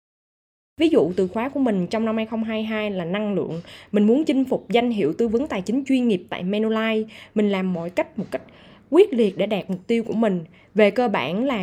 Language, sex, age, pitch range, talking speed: Vietnamese, female, 20-39, 195-255 Hz, 225 wpm